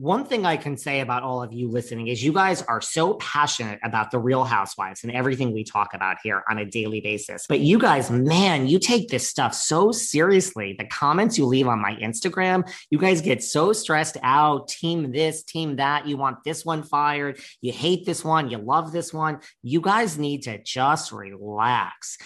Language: English